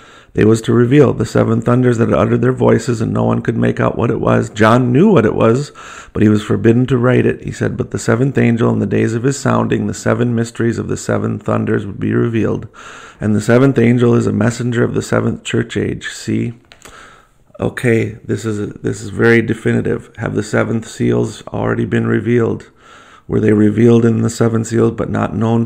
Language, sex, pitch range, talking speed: English, male, 105-120 Hz, 215 wpm